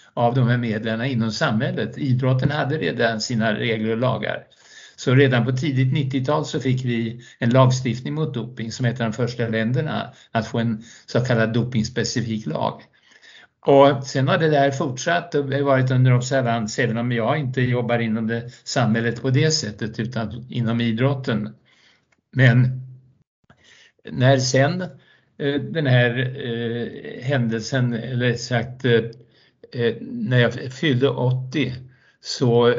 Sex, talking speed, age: male, 145 wpm, 60-79